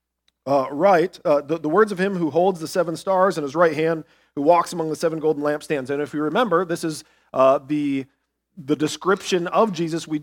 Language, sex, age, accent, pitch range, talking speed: English, male, 40-59, American, 140-175 Hz, 215 wpm